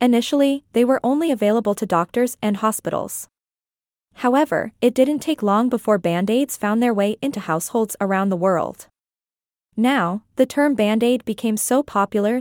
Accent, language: American, English